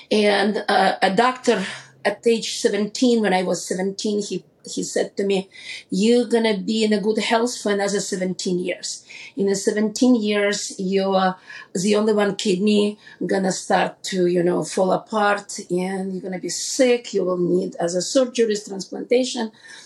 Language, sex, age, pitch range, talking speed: English, female, 40-59, 185-220 Hz, 170 wpm